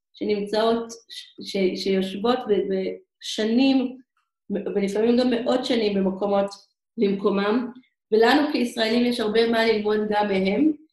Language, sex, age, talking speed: Hebrew, female, 30-49, 105 wpm